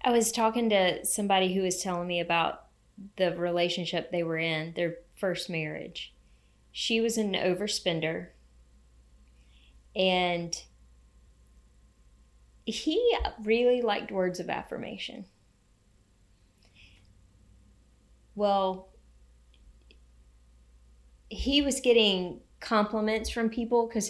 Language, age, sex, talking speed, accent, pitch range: English, 20-39, female, 90 wpm, American, 165-210 Hz